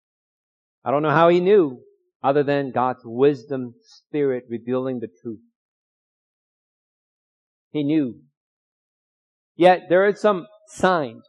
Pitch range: 140-180 Hz